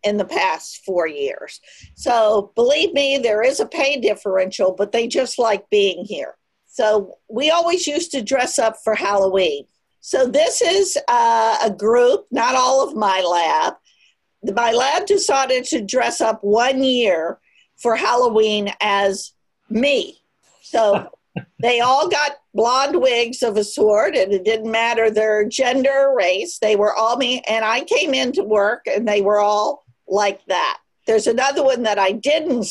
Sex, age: female, 50-69